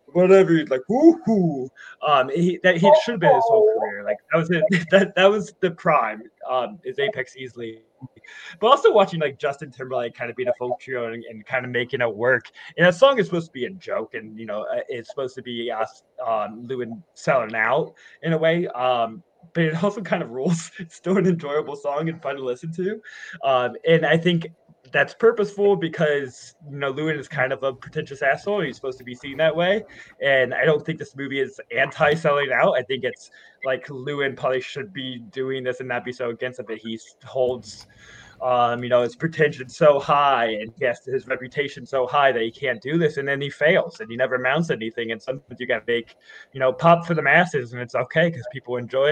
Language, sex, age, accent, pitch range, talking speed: English, male, 20-39, American, 125-170 Hz, 225 wpm